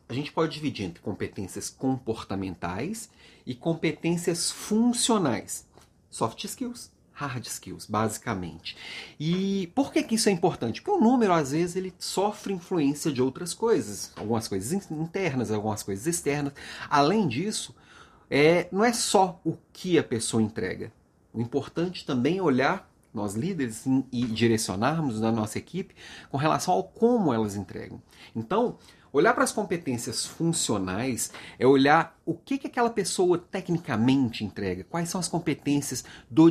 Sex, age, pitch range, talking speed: male, 40-59, 115-175 Hz, 140 wpm